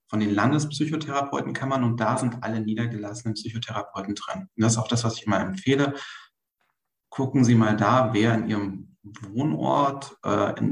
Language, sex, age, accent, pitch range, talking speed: German, male, 40-59, German, 105-125 Hz, 170 wpm